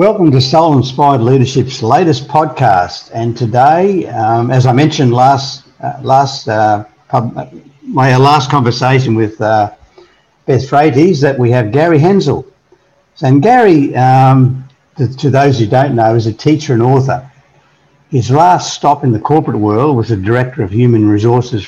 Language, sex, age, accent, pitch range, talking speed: English, male, 60-79, Australian, 120-145 Hz, 160 wpm